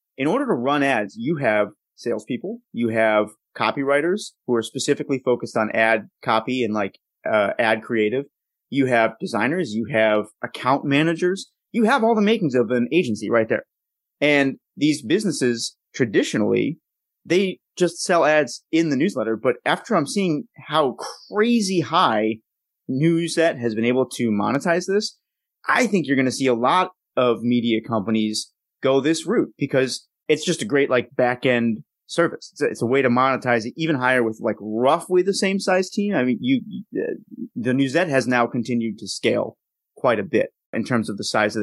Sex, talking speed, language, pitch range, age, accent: male, 175 wpm, English, 120-170 Hz, 30-49, American